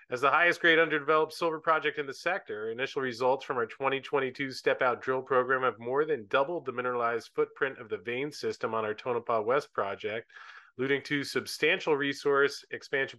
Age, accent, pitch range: 30-49, American, 125-175 Hz